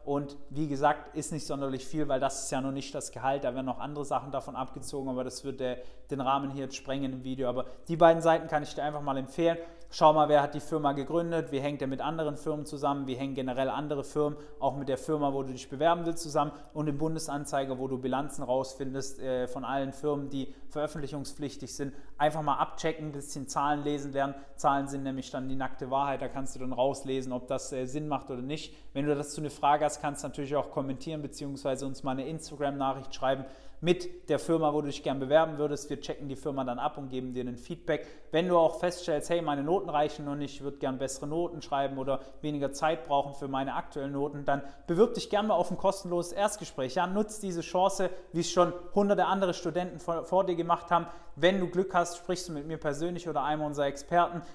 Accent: German